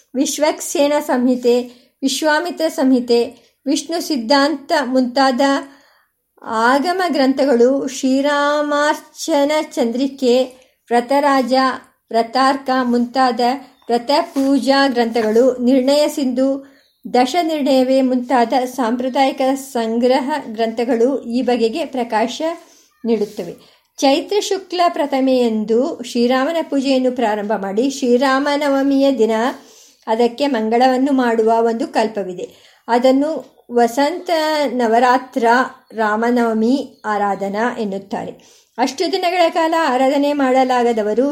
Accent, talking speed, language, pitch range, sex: native, 75 wpm, Kannada, 240-290 Hz, male